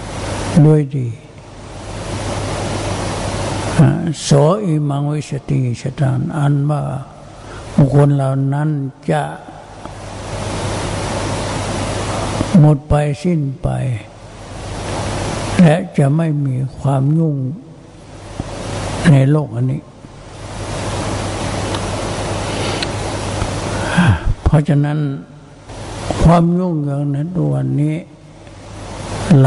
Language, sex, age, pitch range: Thai, male, 60-79, 110-145 Hz